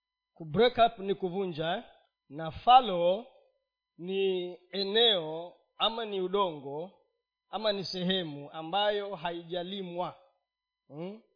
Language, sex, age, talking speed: Swahili, male, 40-59, 90 wpm